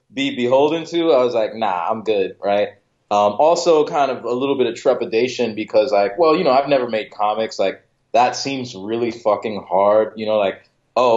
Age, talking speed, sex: 20-39, 205 wpm, male